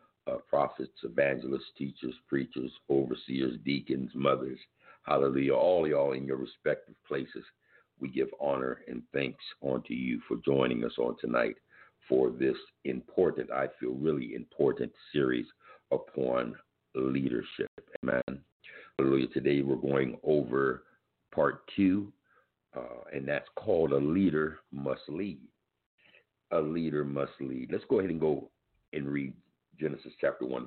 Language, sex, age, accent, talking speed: English, male, 60-79, American, 130 wpm